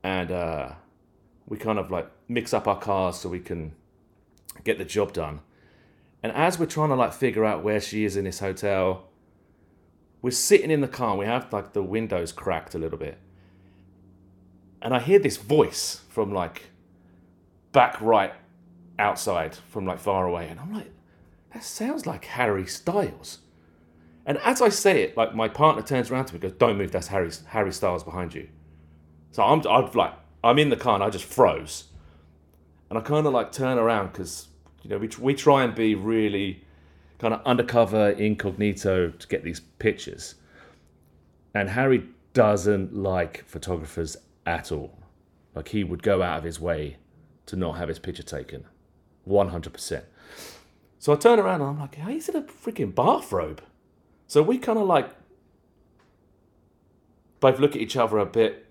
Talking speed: 175 wpm